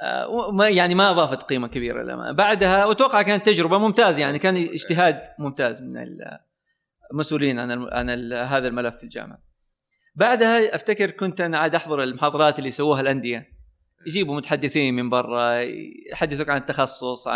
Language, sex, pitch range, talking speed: Arabic, male, 135-200 Hz, 145 wpm